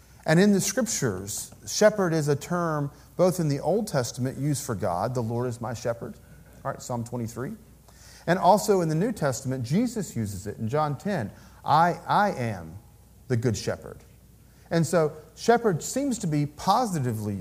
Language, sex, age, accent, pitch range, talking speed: English, male, 40-59, American, 125-180 Hz, 170 wpm